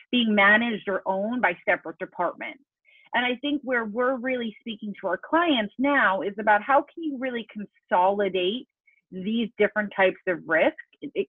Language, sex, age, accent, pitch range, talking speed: English, female, 30-49, American, 190-260 Hz, 165 wpm